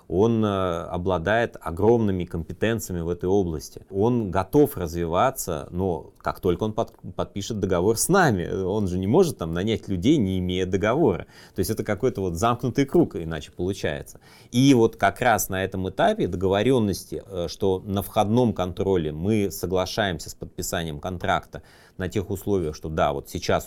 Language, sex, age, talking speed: Russian, male, 30-49, 150 wpm